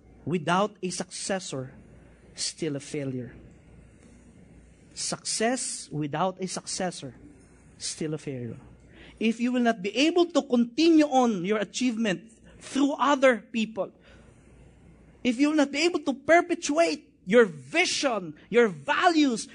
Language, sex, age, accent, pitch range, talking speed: English, male, 50-69, Filipino, 185-280 Hz, 120 wpm